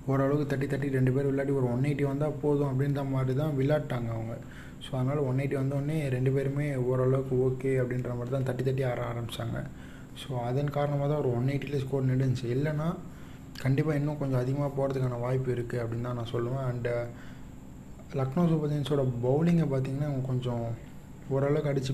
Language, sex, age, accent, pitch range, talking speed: Tamil, male, 30-49, native, 125-145 Hz, 170 wpm